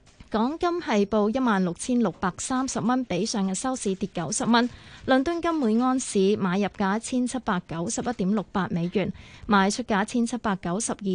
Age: 20-39